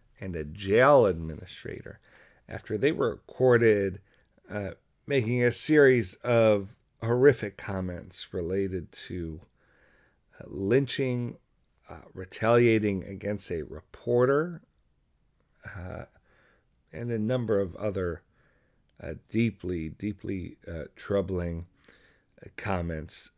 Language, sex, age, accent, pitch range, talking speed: English, male, 40-59, American, 95-120 Hz, 90 wpm